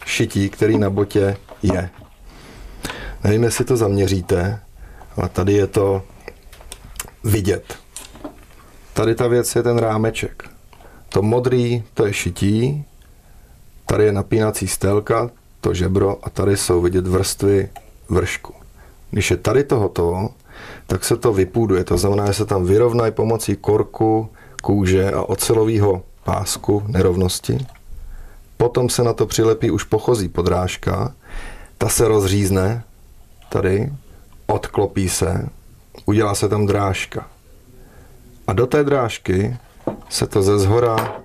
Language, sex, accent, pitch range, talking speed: Czech, male, native, 95-110 Hz, 120 wpm